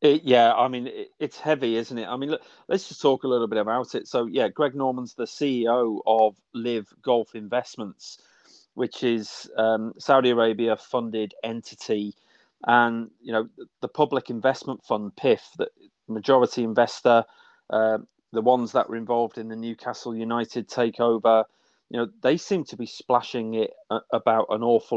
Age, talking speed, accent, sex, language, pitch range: 30-49, 170 wpm, British, male, English, 110-135 Hz